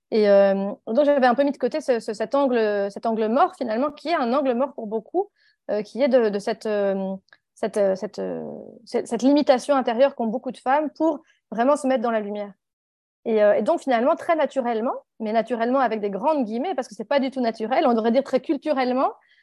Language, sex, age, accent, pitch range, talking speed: French, female, 30-49, French, 220-275 Hz, 235 wpm